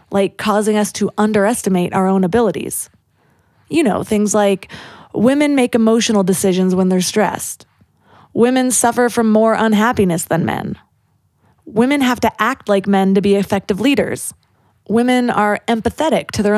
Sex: female